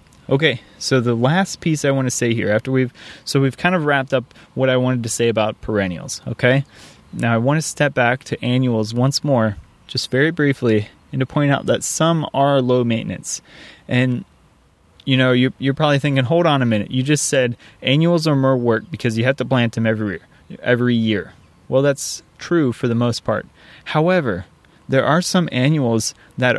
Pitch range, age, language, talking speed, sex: 110-135 Hz, 20-39, English, 195 wpm, male